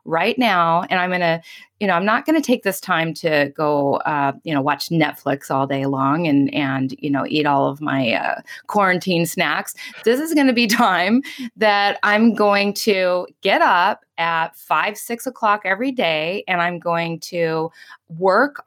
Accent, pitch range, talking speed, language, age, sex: American, 160-225 Hz, 180 wpm, English, 20-39, female